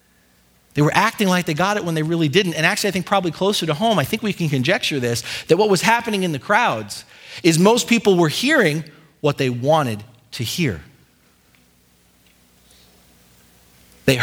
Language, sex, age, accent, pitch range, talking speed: English, male, 40-59, American, 130-210 Hz, 180 wpm